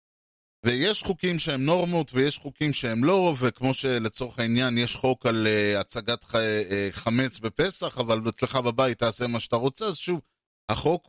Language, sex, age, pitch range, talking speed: Hebrew, male, 30-49, 115-140 Hz, 160 wpm